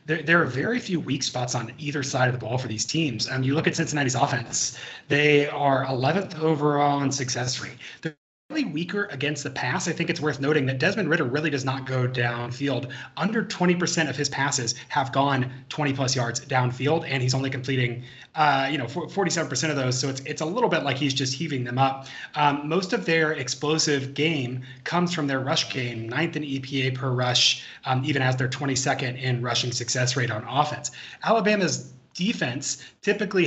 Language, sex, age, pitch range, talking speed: English, male, 30-49, 130-155 Hz, 195 wpm